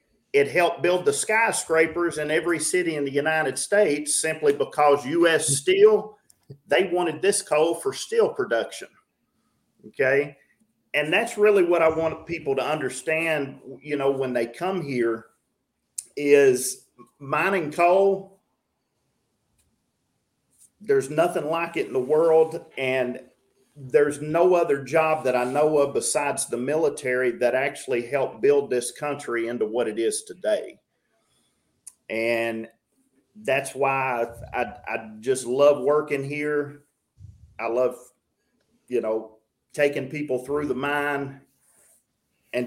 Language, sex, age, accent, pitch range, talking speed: English, male, 40-59, American, 125-175 Hz, 130 wpm